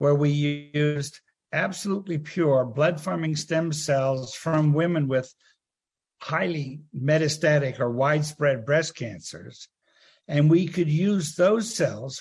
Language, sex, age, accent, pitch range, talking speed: English, male, 60-79, American, 135-160 Hz, 115 wpm